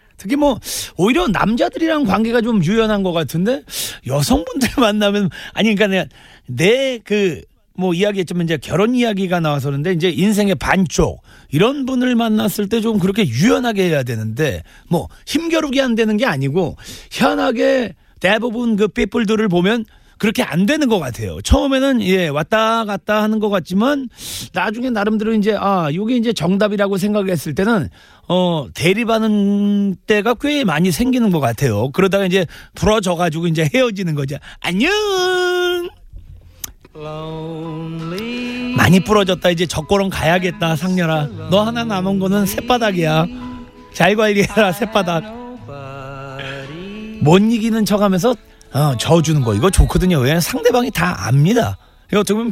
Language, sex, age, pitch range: Korean, male, 40-59, 165-225 Hz